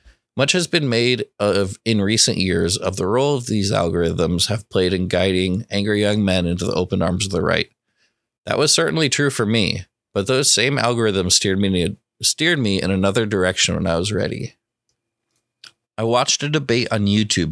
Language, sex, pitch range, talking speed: English, male, 95-120 Hz, 180 wpm